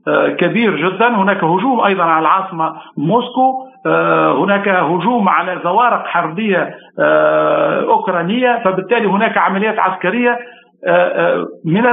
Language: Arabic